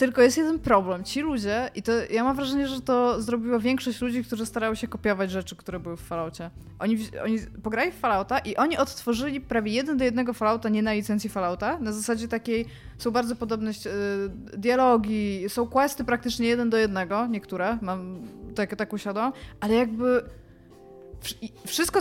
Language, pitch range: Polish, 205-250 Hz